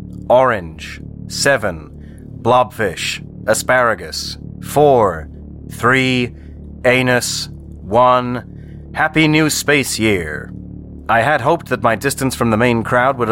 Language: English